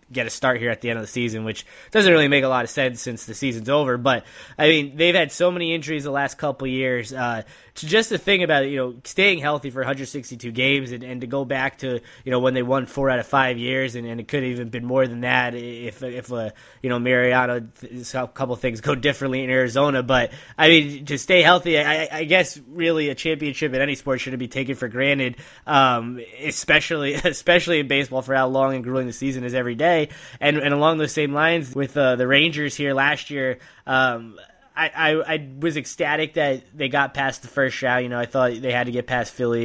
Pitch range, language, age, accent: 125-145 Hz, English, 10-29, American